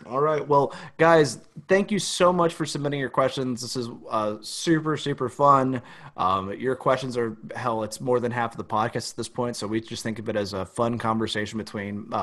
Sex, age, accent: male, 30-49, American